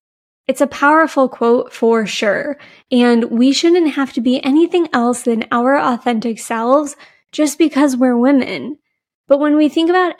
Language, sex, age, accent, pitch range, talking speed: English, female, 20-39, American, 235-285 Hz, 160 wpm